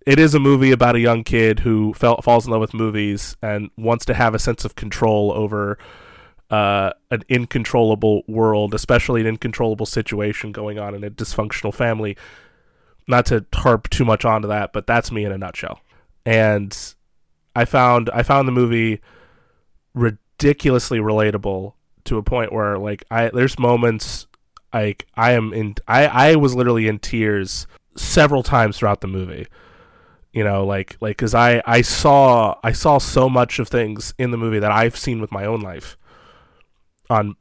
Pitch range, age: 100-120 Hz, 20-39